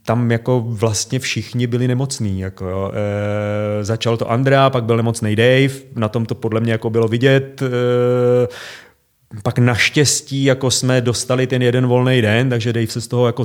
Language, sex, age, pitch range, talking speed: Czech, male, 30-49, 110-125 Hz, 170 wpm